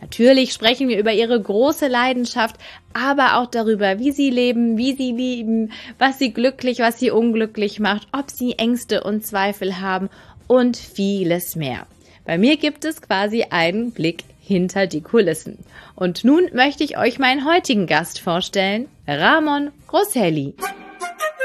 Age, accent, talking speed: 20-39, German, 150 wpm